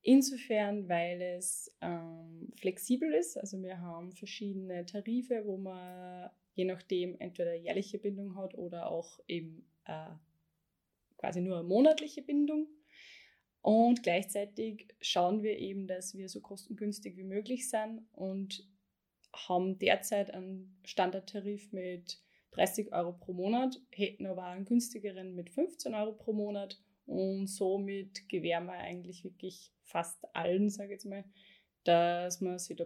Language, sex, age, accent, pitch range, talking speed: German, female, 20-39, German, 180-215 Hz, 140 wpm